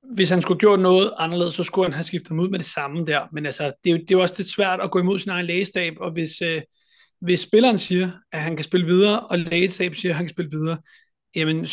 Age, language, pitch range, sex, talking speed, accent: 30-49, Danish, 175-200 Hz, male, 270 wpm, native